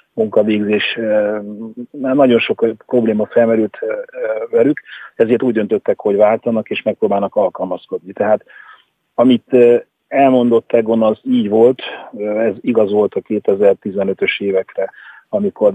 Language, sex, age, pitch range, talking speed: Hungarian, male, 40-59, 100-140 Hz, 110 wpm